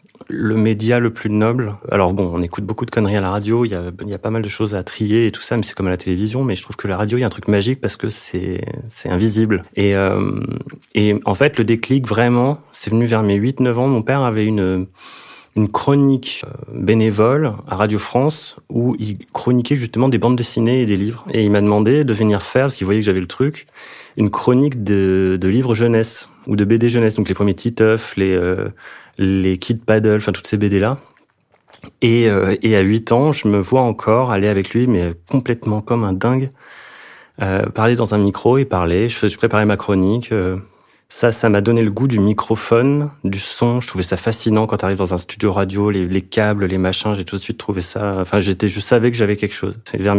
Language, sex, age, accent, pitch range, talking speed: French, male, 30-49, French, 100-120 Hz, 235 wpm